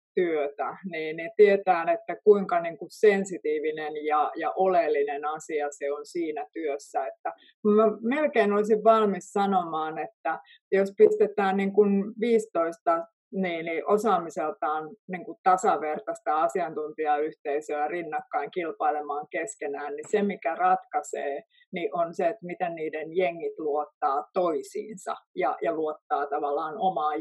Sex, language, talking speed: female, Finnish, 125 wpm